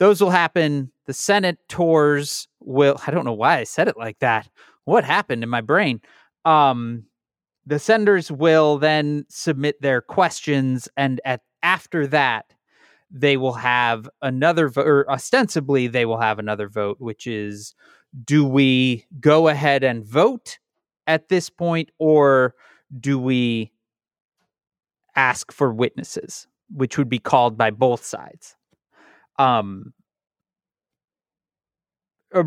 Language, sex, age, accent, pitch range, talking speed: English, male, 30-49, American, 120-155 Hz, 130 wpm